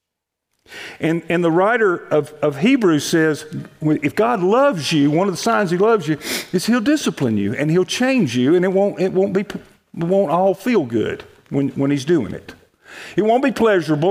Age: 50-69